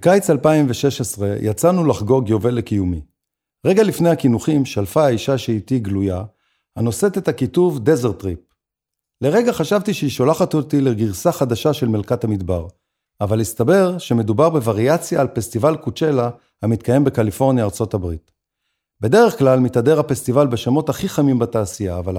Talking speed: 130 wpm